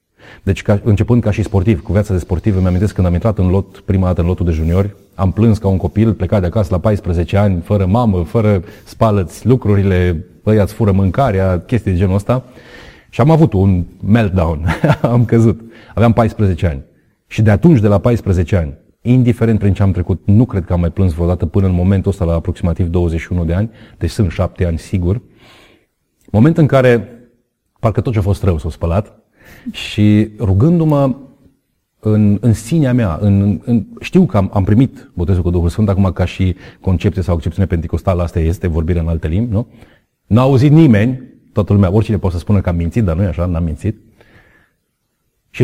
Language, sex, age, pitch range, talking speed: Romanian, male, 30-49, 90-115 Hz, 195 wpm